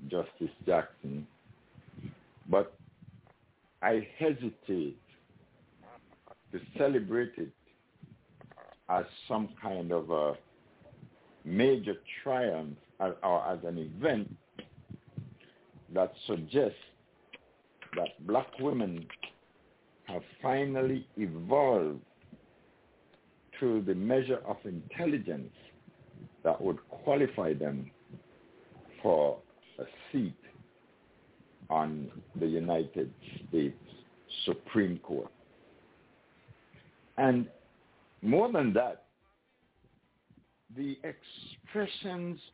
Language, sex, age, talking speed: English, male, 60-79, 70 wpm